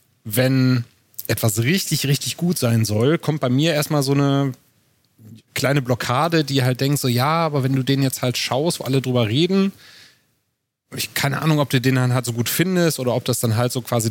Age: 30-49